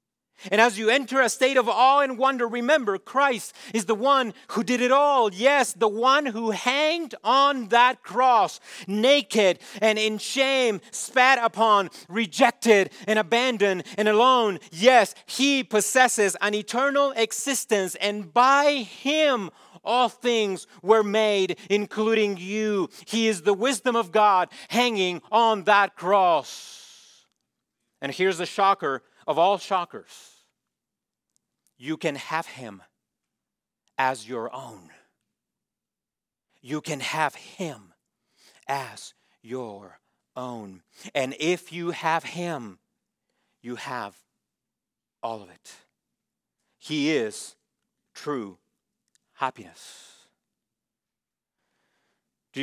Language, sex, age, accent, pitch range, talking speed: English, male, 40-59, American, 165-245 Hz, 115 wpm